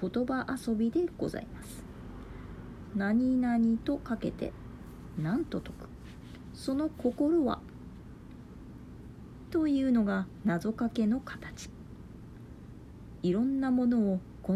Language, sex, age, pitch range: Japanese, female, 40-59, 175-255 Hz